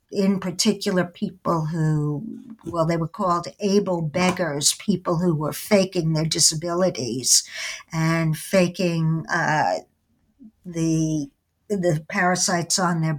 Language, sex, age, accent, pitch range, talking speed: English, male, 60-79, American, 165-200 Hz, 110 wpm